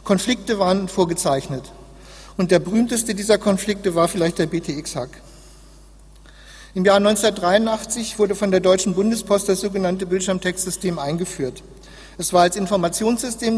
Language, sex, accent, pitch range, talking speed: German, male, German, 170-210 Hz, 125 wpm